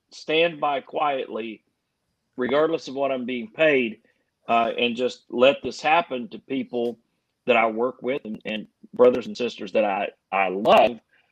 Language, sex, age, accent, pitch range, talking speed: English, male, 40-59, American, 120-145 Hz, 160 wpm